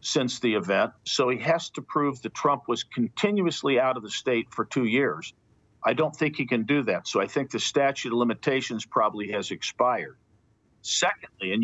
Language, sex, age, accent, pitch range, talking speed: English, male, 50-69, American, 115-145 Hz, 195 wpm